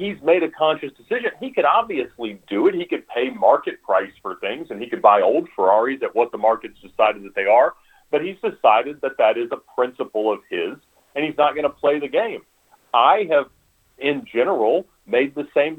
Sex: male